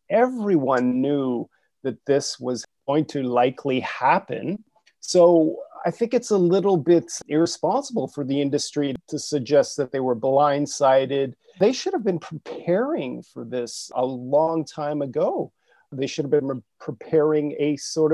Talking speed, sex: 145 wpm, male